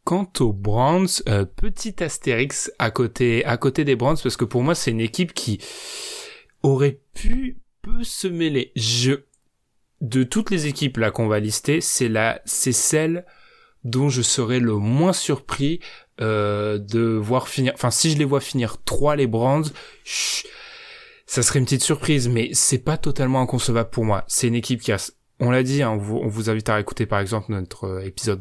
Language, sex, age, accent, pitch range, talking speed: French, male, 20-39, French, 110-140 Hz, 180 wpm